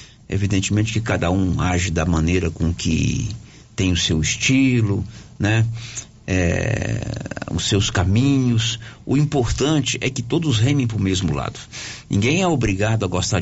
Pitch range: 100-120 Hz